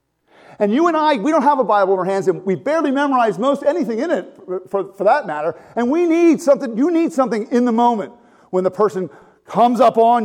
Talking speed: 240 wpm